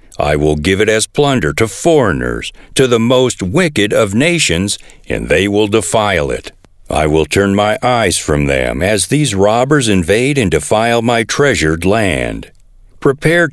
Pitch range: 95-135 Hz